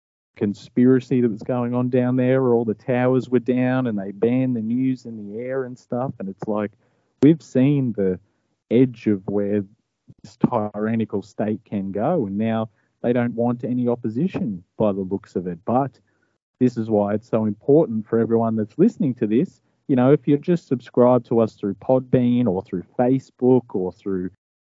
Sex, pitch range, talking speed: male, 110-125 Hz, 185 wpm